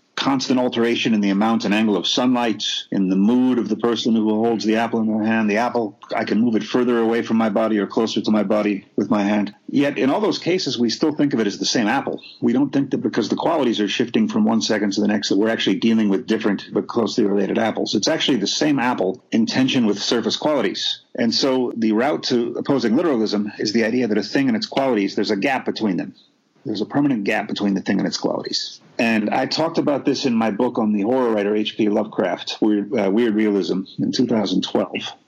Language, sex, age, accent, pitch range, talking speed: English, male, 40-59, American, 105-120 Hz, 240 wpm